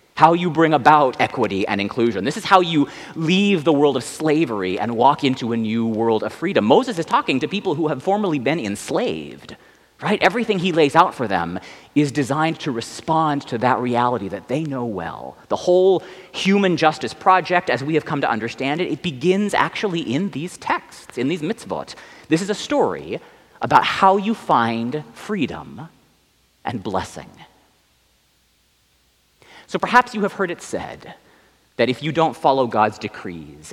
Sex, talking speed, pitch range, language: male, 175 wpm, 115-175 Hz, English